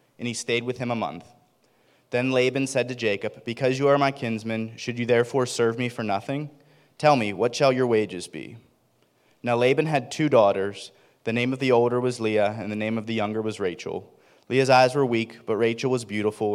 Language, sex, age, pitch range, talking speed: English, male, 30-49, 110-130 Hz, 215 wpm